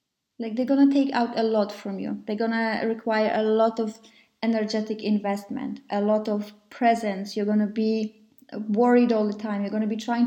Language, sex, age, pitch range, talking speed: English, female, 20-39, 215-260 Hz, 185 wpm